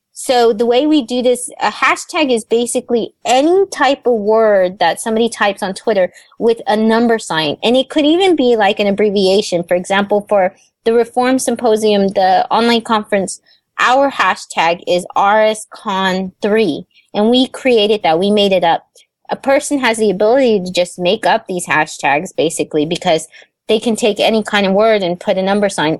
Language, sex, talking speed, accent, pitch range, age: English, female, 180 wpm, American, 190-245 Hz, 20-39